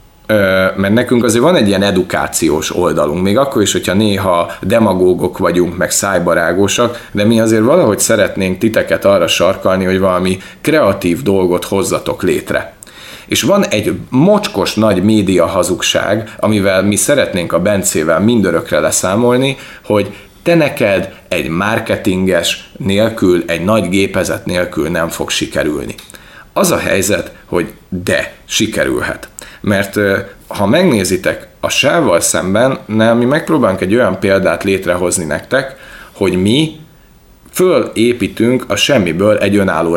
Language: Hungarian